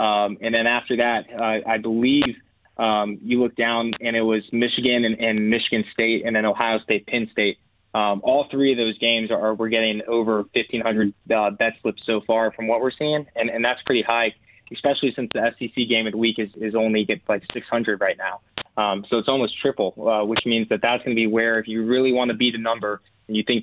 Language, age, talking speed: English, 20-39, 230 wpm